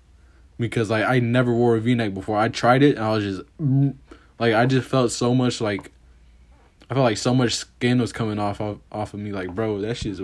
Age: 20-39